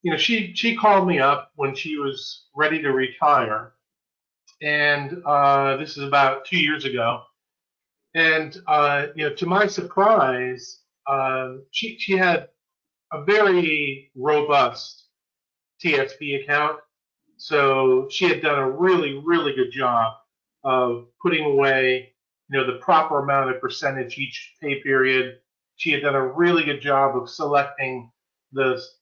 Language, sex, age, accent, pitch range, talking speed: English, male, 40-59, American, 135-170 Hz, 145 wpm